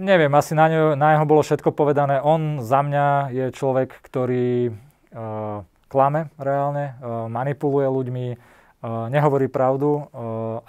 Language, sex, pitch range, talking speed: Slovak, male, 120-135 Hz, 135 wpm